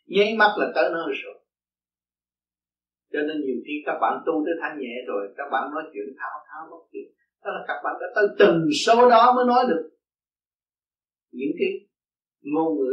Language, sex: Vietnamese, male